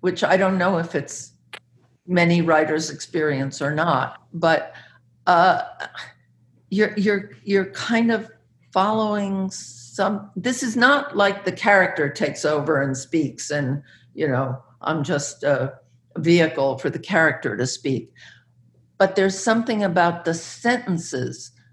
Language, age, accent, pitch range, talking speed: English, 60-79, American, 130-185 Hz, 135 wpm